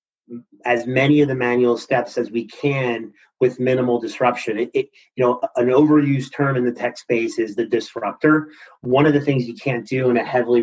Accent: American